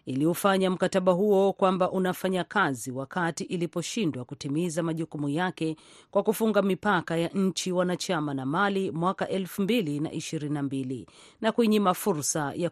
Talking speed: 125 wpm